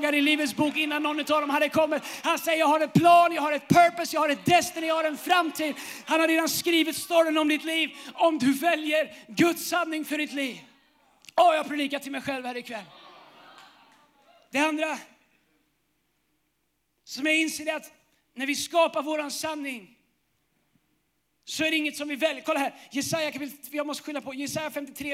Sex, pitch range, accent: male, 260-310 Hz, native